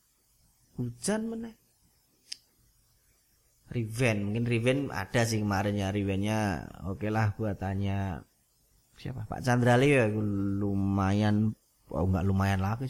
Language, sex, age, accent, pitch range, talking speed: Indonesian, male, 30-49, native, 105-140 Hz, 100 wpm